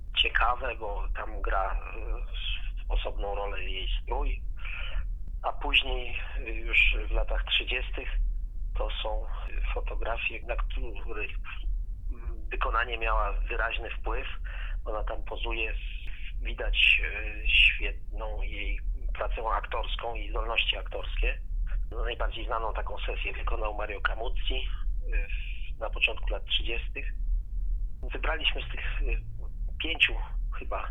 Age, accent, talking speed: 40-59, native, 95 wpm